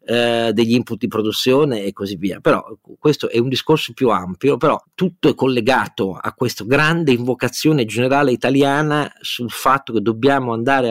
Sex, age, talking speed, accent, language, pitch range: male, 40-59, 160 wpm, native, Italian, 105-140 Hz